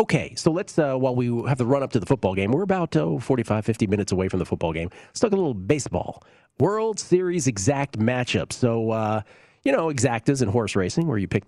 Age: 40-59